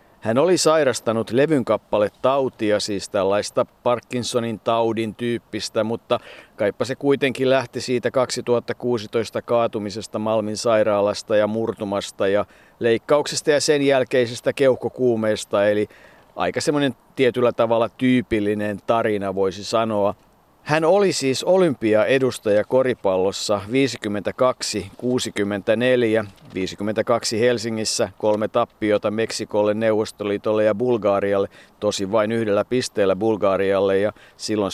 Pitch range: 105-125 Hz